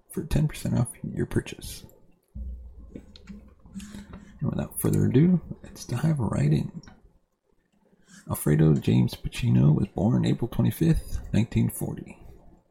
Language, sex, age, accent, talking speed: English, male, 40-59, American, 95 wpm